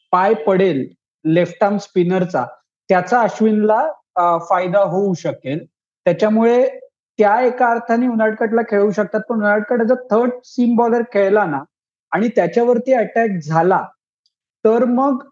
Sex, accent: male, native